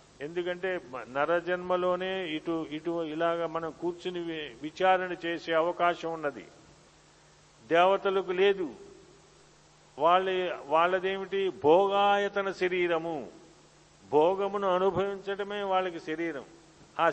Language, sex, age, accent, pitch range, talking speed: Telugu, male, 50-69, native, 160-185 Hz, 75 wpm